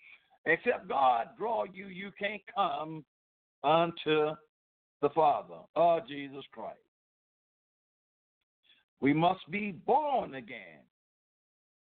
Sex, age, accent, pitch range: male, 60-79, American, 160-220 Hz